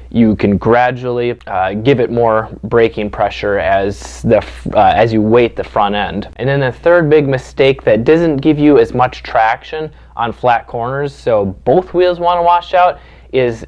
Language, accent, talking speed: English, American, 185 wpm